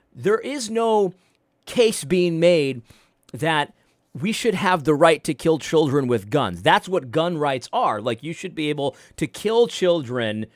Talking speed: 170 wpm